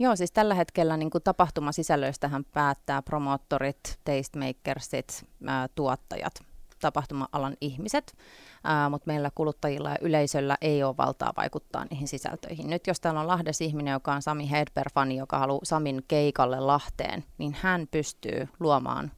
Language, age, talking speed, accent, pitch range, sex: Finnish, 30-49, 140 wpm, native, 140-165 Hz, female